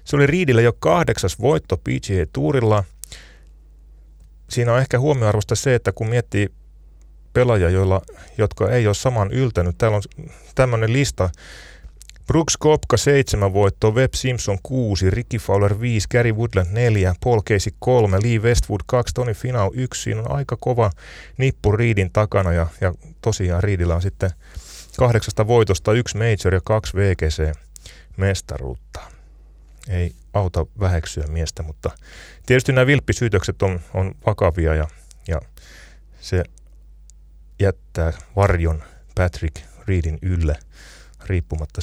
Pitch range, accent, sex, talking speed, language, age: 80-115 Hz, native, male, 125 wpm, Finnish, 30-49